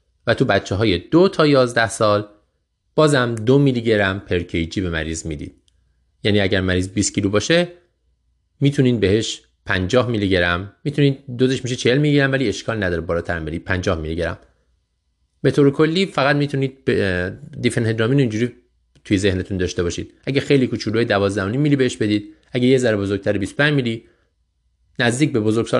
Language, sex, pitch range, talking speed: Persian, male, 85-130 Hz, 155 wpm